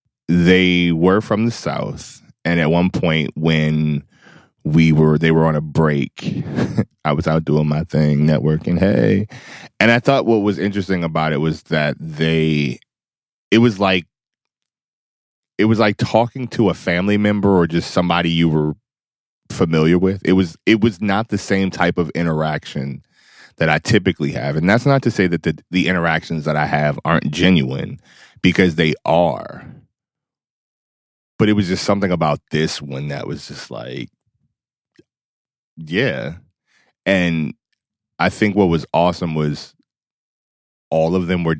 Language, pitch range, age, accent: English, 80-95 Hz, 20-39, American